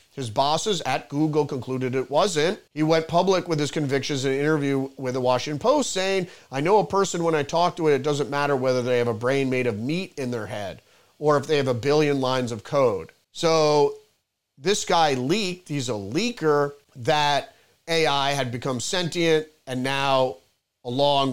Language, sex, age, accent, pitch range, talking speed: English, male, 40-59, American, 135-170 Hz, 190 wpm